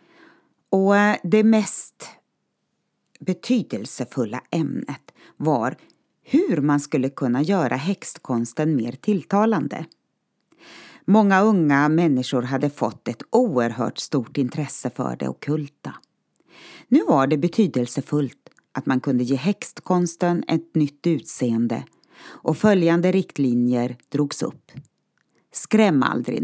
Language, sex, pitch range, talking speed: Swedish, female, 140-215 Hz, 100 wpm